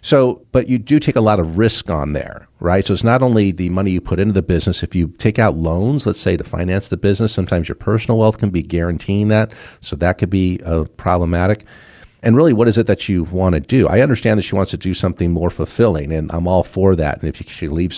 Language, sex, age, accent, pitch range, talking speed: English, male, 50-69, American, 85-110 Hz, 255 wpm